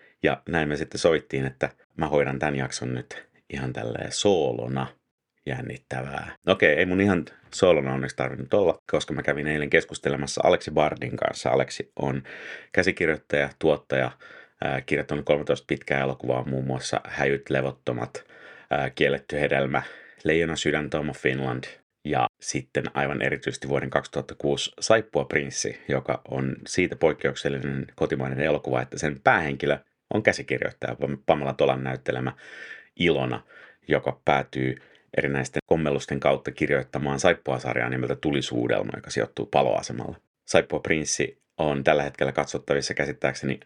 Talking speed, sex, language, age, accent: 125 wpm, male, Finnish, 30-49, native